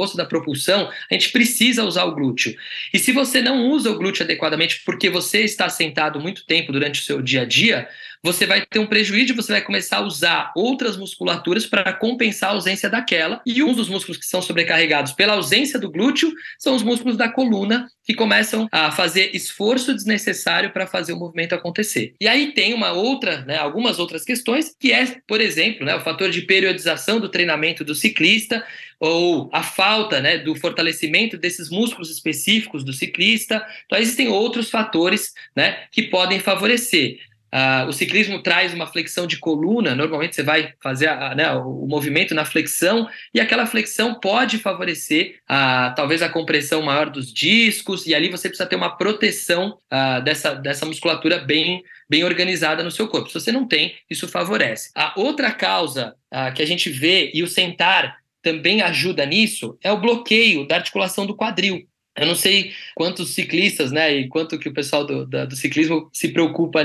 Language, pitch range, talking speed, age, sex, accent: Portuguese, 160-220 Hz, 180 wpm, 20-39, male, Brazilian